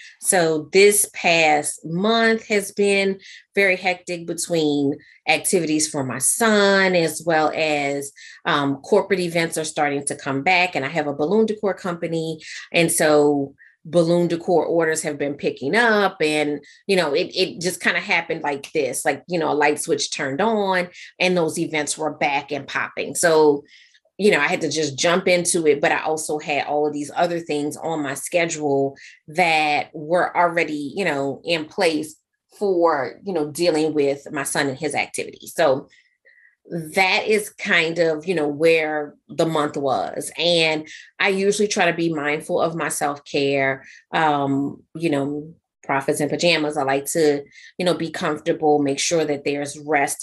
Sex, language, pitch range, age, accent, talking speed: female, English, 145-180 Hz, 30-49, American, 170 wpm